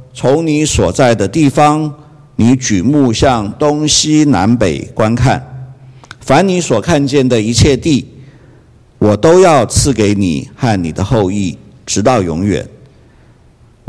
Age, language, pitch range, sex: 50-69, Chinese, 110-135 Hz, male